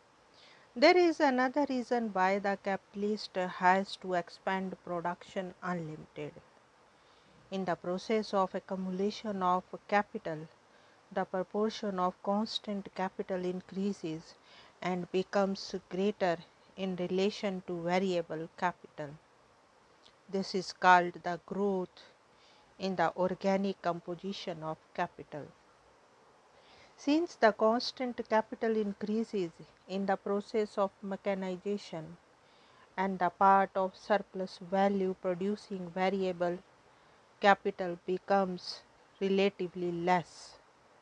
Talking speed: 95 wpm